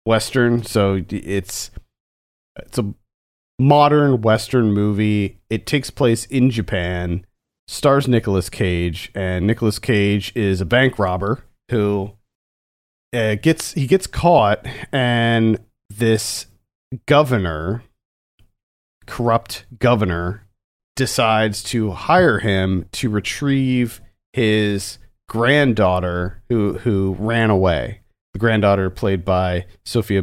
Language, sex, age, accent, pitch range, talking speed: English, male, 40-59, American, 95-120 Hz, 100 wpm